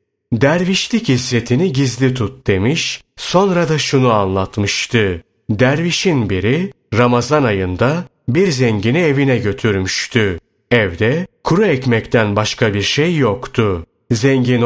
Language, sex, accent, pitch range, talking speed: Turkish, male, native, 110-140 Hz, 100 wpm